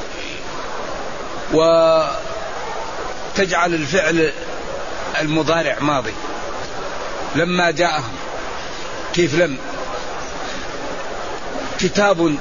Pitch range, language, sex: 175-205 Hz, Arabic, male